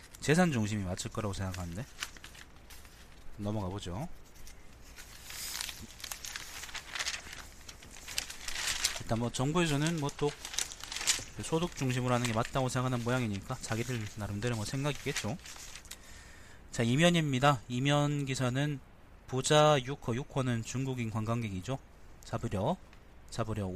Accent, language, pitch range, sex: native, Korean, 100-130 Hz, male